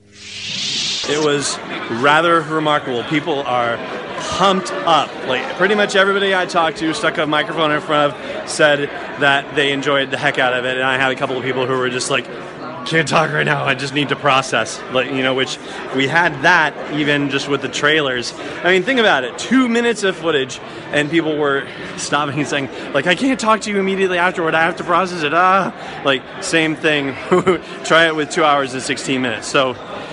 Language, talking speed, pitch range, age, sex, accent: English, 205 wpm, 130-160 Hz, 30-49, male, American